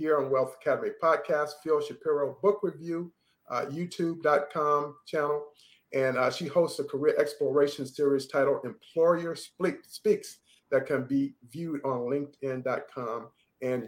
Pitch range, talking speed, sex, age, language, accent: 135-170 Hz, 125 wpm, male, 50-69, English, American